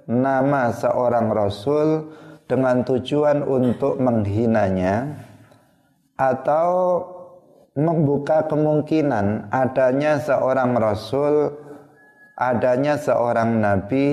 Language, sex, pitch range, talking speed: Indonesian, male, 120-150 Hz, 70 wpm